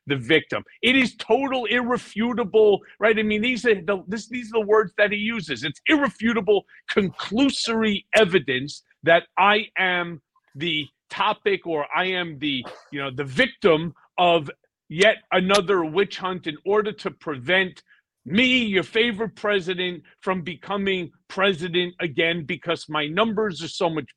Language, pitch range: English, 165-215 Hz